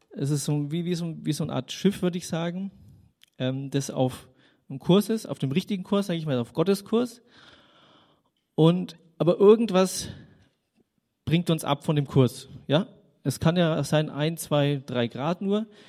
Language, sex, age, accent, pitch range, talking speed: German, male, 30-49, German, 135-175 Hz, 185 wpm